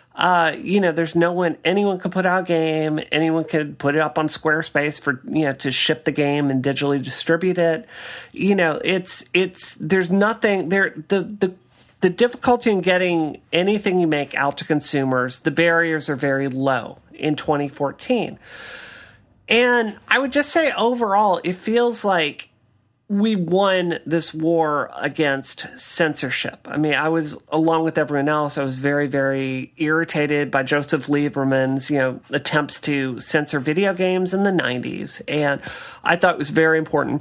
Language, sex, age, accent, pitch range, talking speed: English, male, 40-59, American, 145-190 Hz, 170 wpm